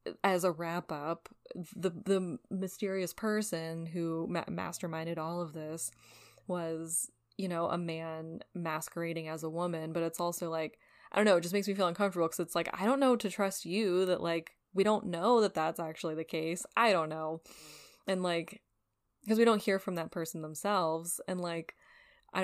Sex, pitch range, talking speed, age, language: female, 165-215 Hz, 190 wpm, 10-29, English